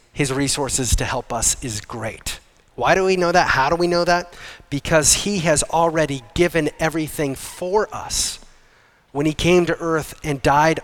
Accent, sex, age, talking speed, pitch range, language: American, male, 30-49, 175 wpm, 150-220 Hz, English